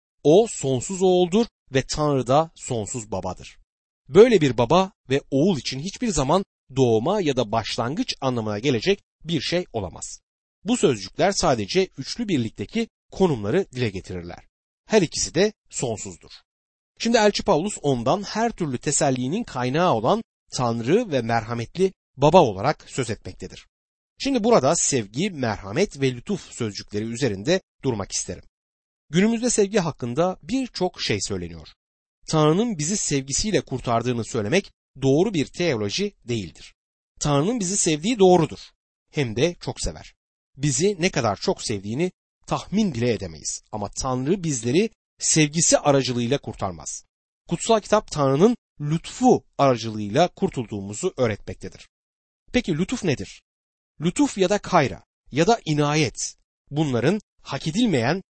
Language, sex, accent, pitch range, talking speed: Turkish, male, native, 120-190 Hz, 125 wpm